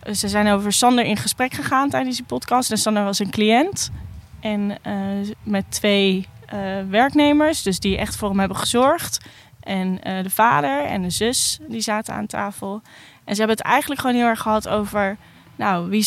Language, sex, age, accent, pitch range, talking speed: Dutch, female, 10-29, Dutch, 195-220 Hz, 185 wpm